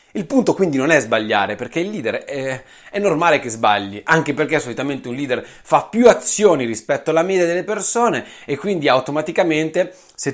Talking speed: 180 wpm